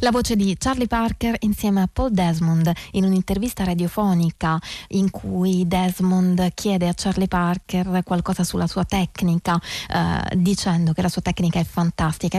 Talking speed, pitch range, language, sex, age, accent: 150 wpm, 175-205 Hz, Italian, female, 20-39, native